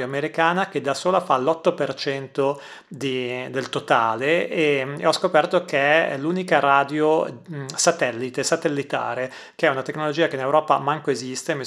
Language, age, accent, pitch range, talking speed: Italian, 30-49, native, 140-155 Hz, 145 wpm